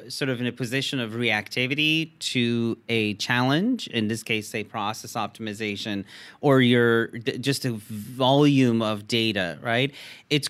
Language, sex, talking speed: English, male, 150 wpm